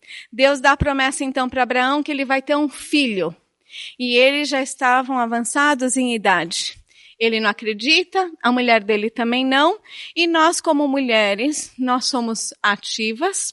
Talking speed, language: 155 wpm, Portuguese